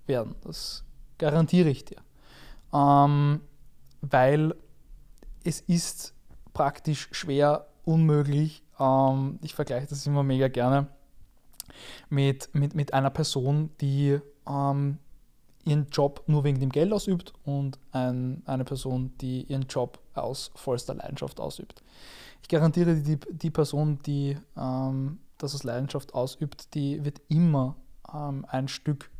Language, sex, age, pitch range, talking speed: German, male, 20-39, 135-155 Hz, 125 wpm